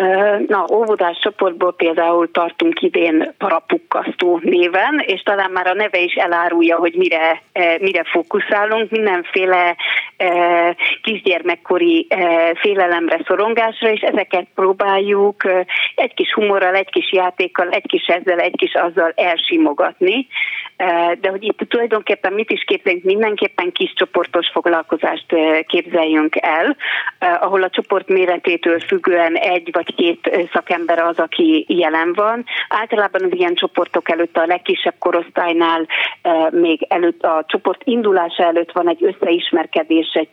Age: 30-49